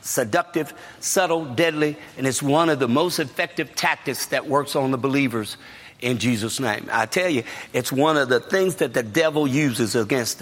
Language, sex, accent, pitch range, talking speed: English, male, American, 125-160 Hz, 185 wpm